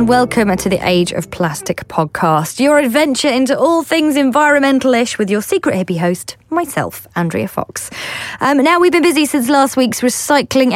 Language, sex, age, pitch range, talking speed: English, female, 20-39, 180-275 Hz, 175 wpm